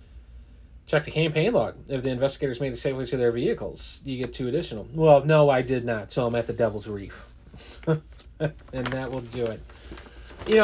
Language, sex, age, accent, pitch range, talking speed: English, male, 30-49, American, 100-130 Hz, 190 wpm